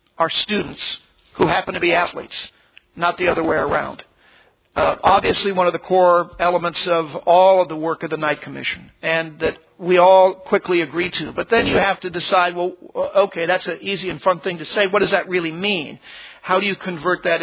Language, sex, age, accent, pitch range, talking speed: English, male, 50-69, American, 170-185 Hz, 210 wpm